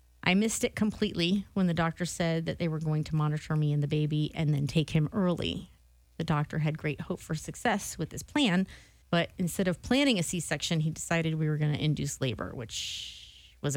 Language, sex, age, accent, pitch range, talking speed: English, female, 30-49, American, 155-215 Hz, 215 wpm